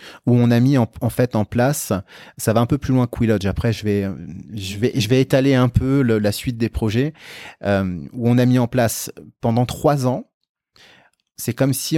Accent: French